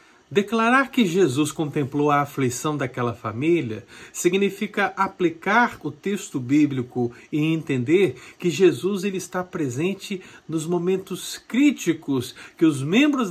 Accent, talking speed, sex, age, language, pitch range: Brazilian, 115 wpm, male, 50-69, Portuguese, 135-195 Hz